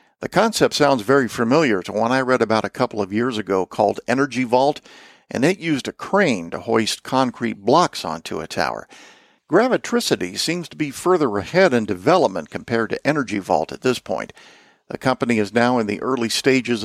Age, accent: 50-69, American